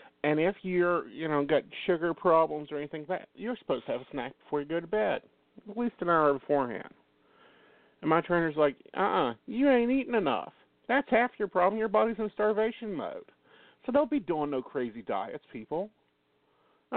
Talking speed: 195 wpm